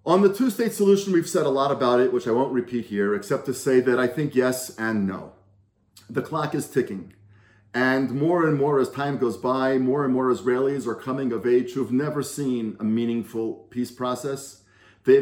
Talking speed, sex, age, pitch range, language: 205 wpm, male, 40-59, 125-180 Hz, English